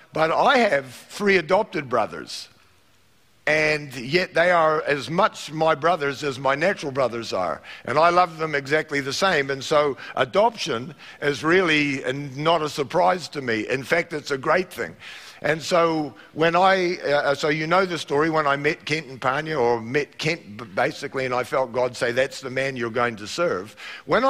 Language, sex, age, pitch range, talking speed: English, male, 50-69, 135-175 Hz, 185 wpm